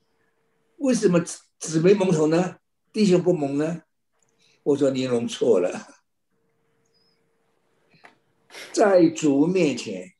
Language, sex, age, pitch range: Chinese, male, 60-79, 150-205 Hz